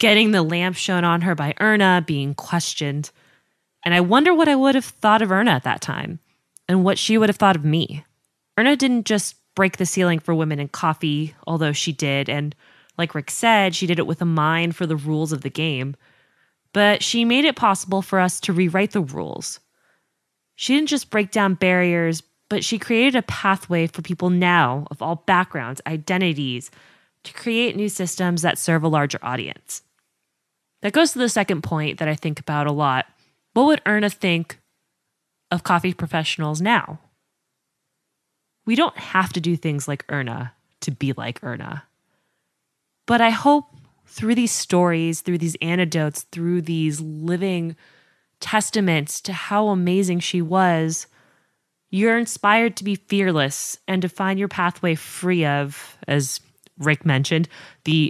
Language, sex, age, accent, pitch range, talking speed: English, female, 20-39, American, 155-195 Hz, 170 wpm